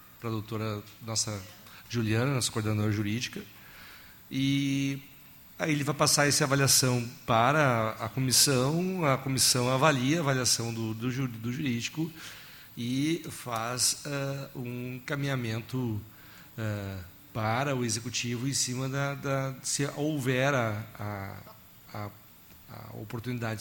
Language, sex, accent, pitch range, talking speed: Portuguese, male, Brazilian, 115-135 Hz, 120 wpm